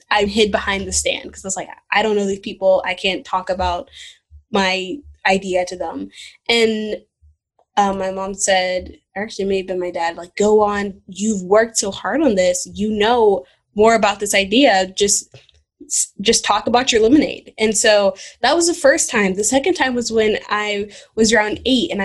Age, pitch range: 10-29, 190-225 Hz